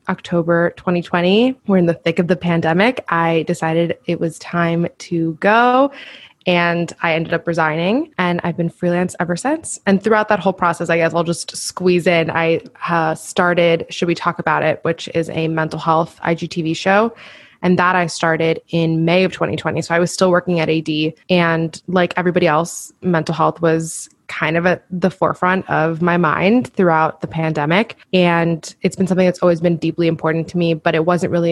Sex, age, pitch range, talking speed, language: female, 20-39, 165-185 Hz, 190 wpm, English